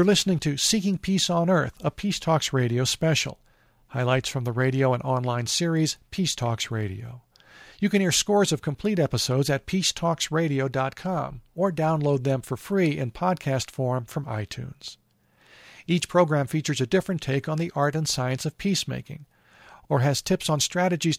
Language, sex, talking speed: English, male, 165 wpm